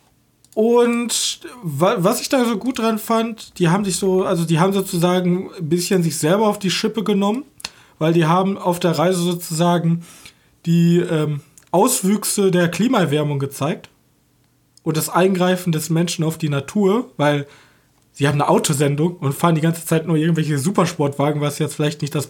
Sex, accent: male, German